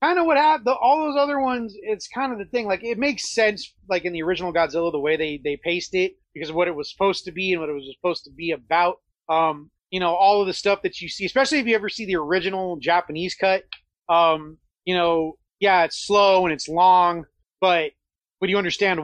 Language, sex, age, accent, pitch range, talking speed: English, male, 30-49, American, 160-195 Hz, 240 wpm